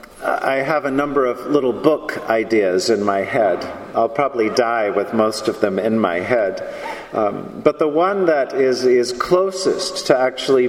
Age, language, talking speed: 50-69, English, 175 wpm